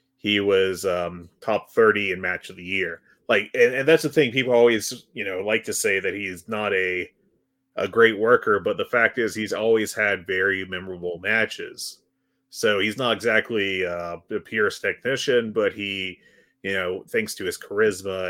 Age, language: 30-49, English